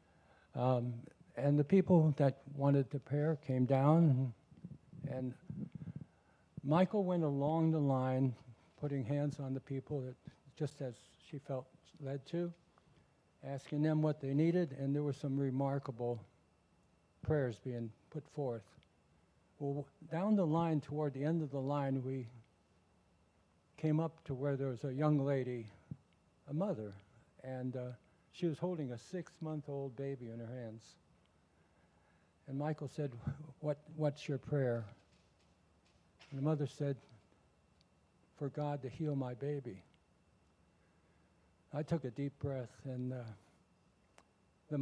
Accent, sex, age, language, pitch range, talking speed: American, male, 60-79, English, 115-150 Hz, 135 wpm